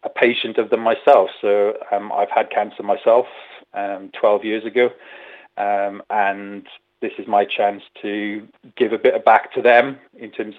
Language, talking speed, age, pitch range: English, 175 wpm, 30-49, 105-120 Hz